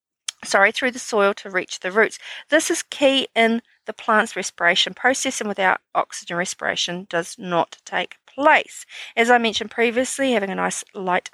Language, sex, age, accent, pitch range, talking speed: English, female, 40-59, Australian, 195-260 Hz, 170 wpm